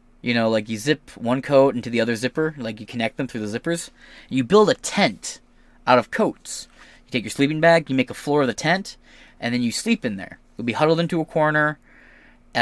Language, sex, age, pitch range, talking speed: English, male, 10-29, 115-160 Hz, 235 wpm